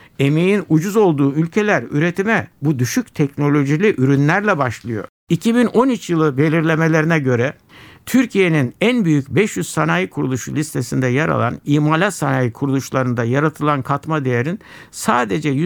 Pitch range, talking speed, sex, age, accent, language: 135-195 Hz, 115 wpm, male, 60-79, native, Turkish